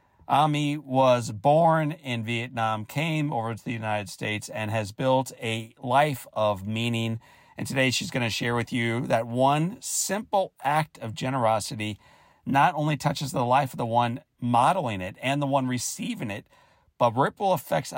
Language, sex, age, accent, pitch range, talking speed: English, male, 40-59, American, 115-140 Hz, 165 wpm